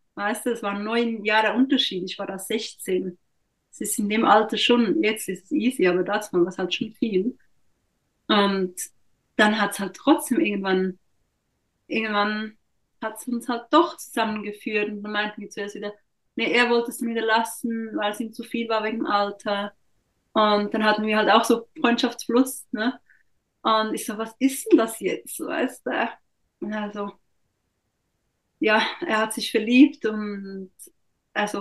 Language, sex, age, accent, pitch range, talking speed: German, female, 30-49, German, 205-245 Hz, 170 wpm